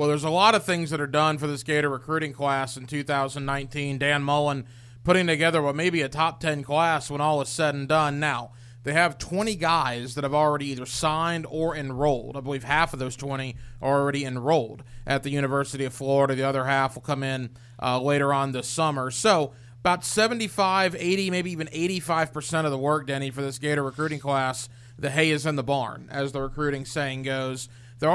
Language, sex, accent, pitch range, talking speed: English, male, American, 135-160 Hz, 210 wpm